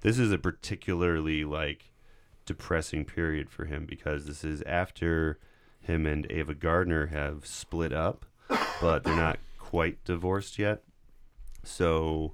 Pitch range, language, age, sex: 75-85 Hz, English, 30-49, male